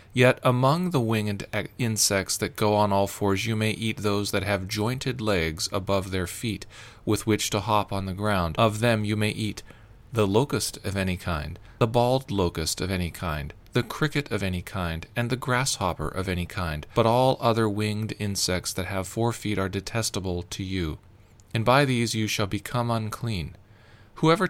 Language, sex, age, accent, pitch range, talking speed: English, male, 40-59, American, 100-115 Hz, 185 wpm